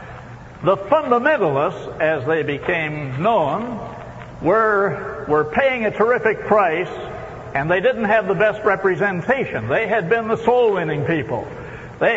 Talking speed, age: 135 wpm, 60-79